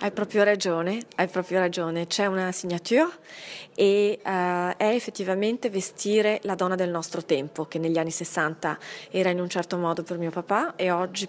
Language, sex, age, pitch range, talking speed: French, female, 20-39, 180-215 Hz, 170 wpm